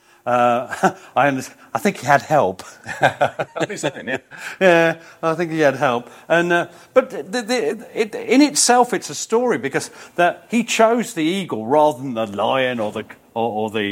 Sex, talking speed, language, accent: male, 175 wpm, English, British